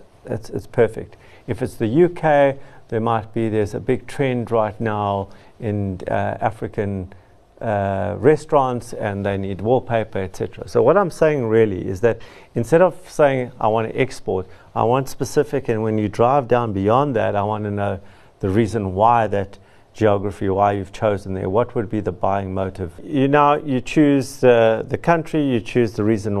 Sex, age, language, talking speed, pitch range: male, 50-69, English, 180 wpm, 100-125 Hz